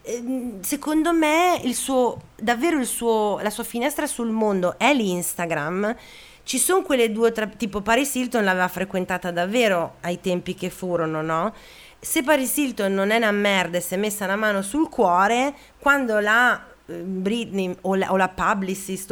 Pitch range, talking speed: 175-230 Hz, 165 wpm